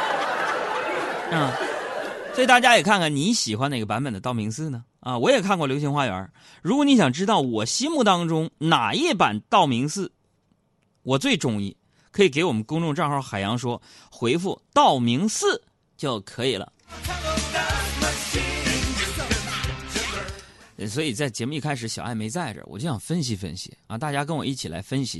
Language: Chinese